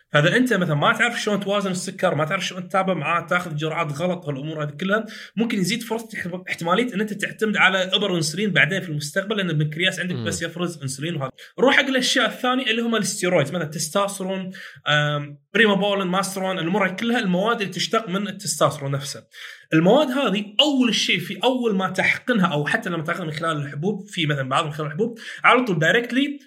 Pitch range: 165-230 Hz